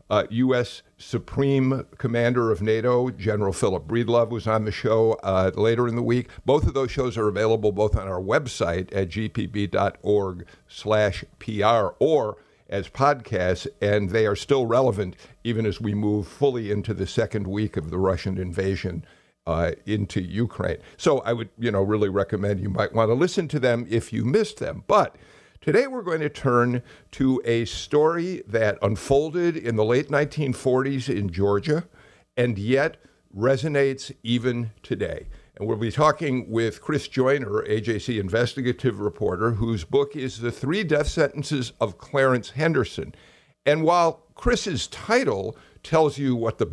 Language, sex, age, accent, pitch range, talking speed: English, male, 50-69, American, 105-135 Hz, 160 wpm